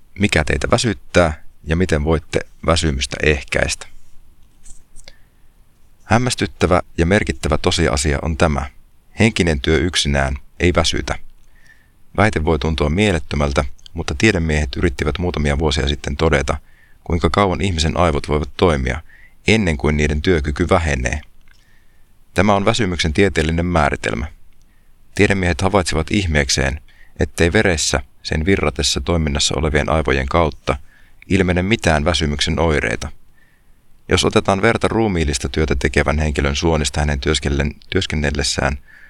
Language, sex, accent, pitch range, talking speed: Finnish, male, native, 75-90 Hz, 110 wpm